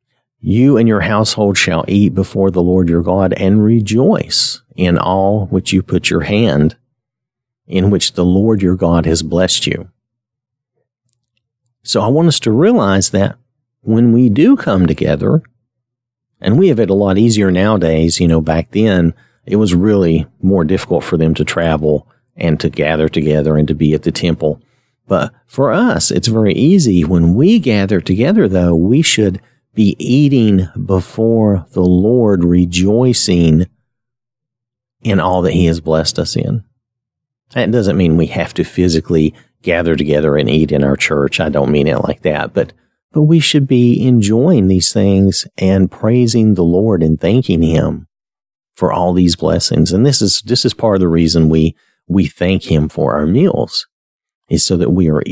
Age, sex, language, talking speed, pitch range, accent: 50-69, male, English, 170 wpm, 85-120 Hz, American